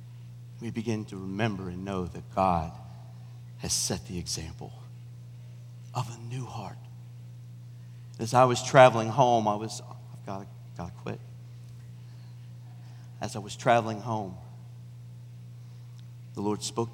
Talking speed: 130 wpm